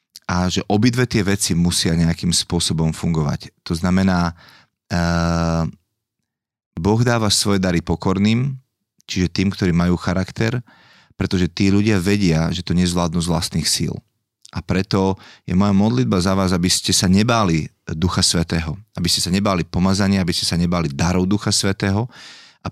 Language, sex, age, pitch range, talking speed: Slovak, male, 30-49, 85-100 Hz, 155 wpm